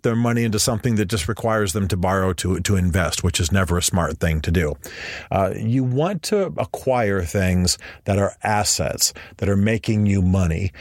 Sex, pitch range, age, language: male, 90-115 Hz, 40-59, English